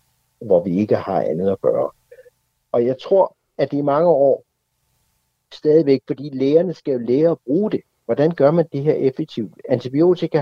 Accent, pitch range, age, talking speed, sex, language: native, 120-160 Hz, 60-79, 180 wpm, male, Danish